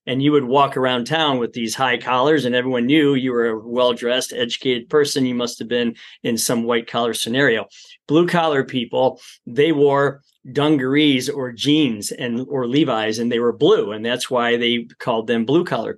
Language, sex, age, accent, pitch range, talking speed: English, male, 40-59, American, 125-160 Hz, 180 wpm